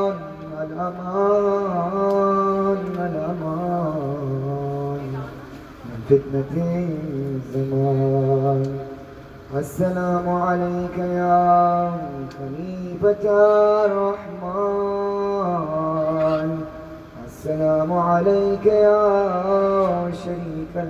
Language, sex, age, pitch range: Urdu, male, 20-39, 150-200 Hz